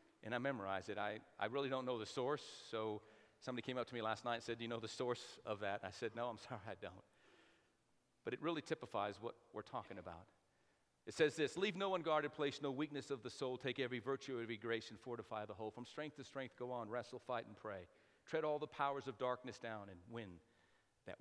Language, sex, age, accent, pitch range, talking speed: English, male, 40-59, American, 120-180 Hz, 240 wpm